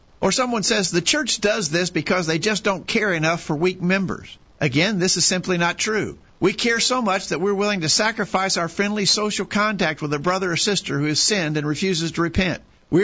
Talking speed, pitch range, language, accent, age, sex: 220 wpm, 165-210 Hz, English, American, 50-69, male